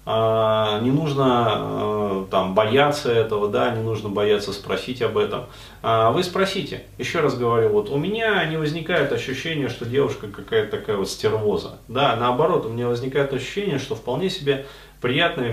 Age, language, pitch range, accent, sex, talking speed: 30-49, Russian, 105-140 Hz, native, male, 150 wpm